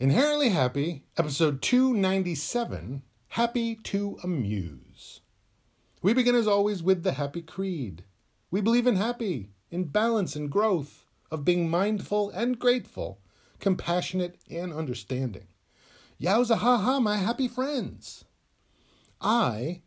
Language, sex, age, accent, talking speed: English, male, 40-59, American, 115 wpm